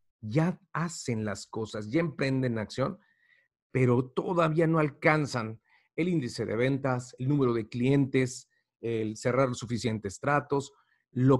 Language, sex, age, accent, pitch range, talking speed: Spanish, male, 40-59, Mexican, 115-150 Hz, 125 wpm